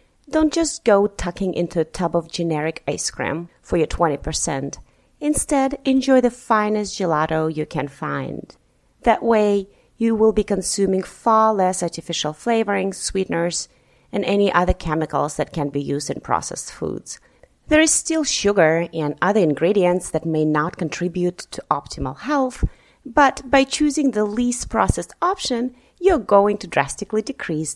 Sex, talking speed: female, 150 wpm